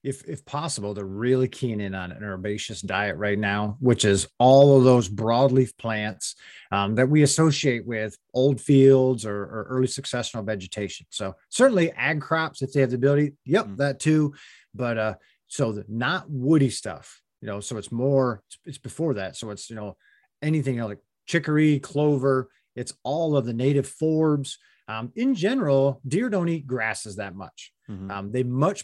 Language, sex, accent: English, male, American